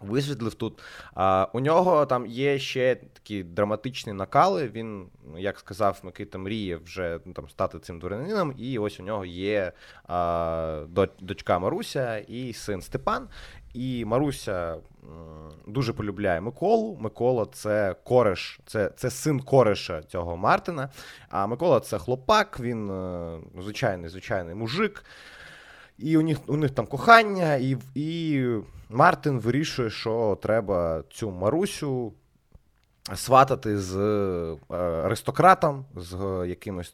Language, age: Ukrainian, 20-39